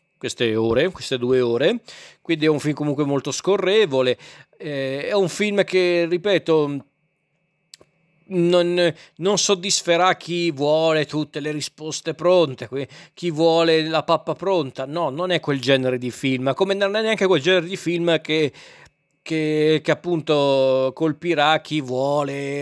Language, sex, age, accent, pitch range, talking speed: Italian, male, 40-59, native, 135-170 Hz, 145 wpm